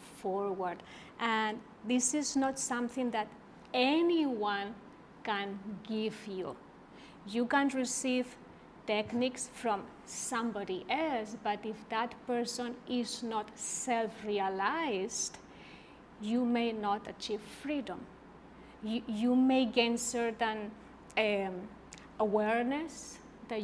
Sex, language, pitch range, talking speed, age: female, English, 210-245 Hz, 95 wpm, 30-49